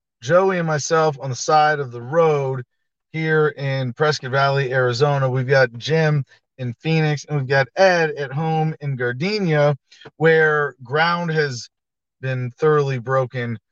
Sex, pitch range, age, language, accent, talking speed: male, 125-165 Hz, 30-49, English, American, 145 wpm